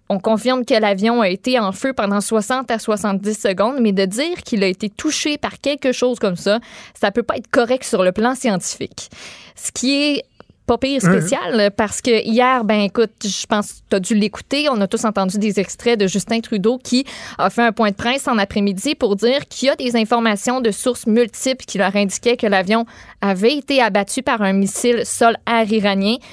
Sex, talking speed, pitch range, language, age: female, 215 wpm, 205-245 Hz, French, 20-39